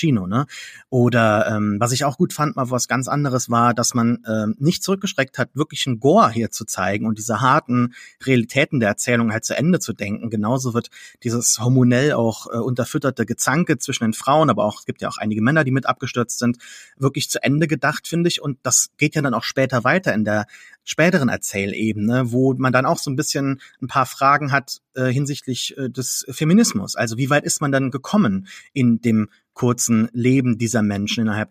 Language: German